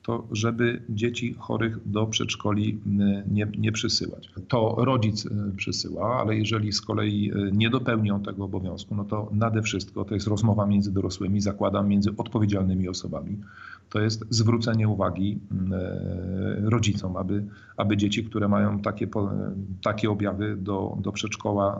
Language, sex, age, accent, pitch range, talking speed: Polish, male, 40-59, native, 100-115 Hz, 135 wpm